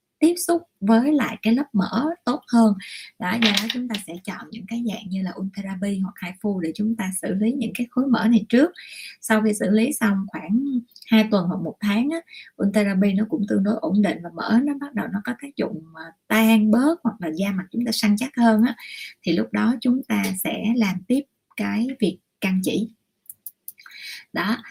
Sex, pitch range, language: female, 195-240 Hz, Vietnamese